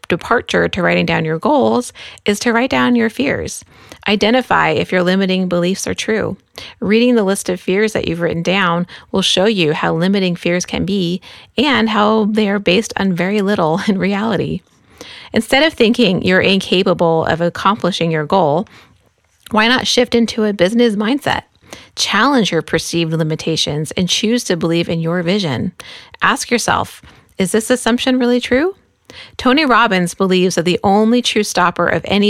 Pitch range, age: 175-225 Hz, 30-49